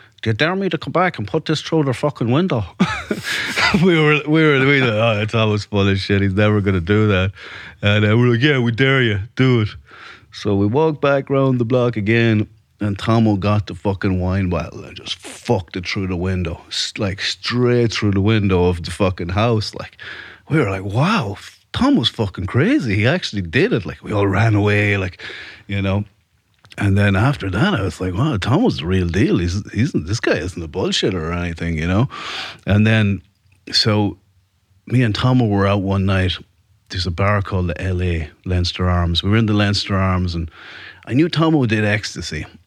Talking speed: 205 wpm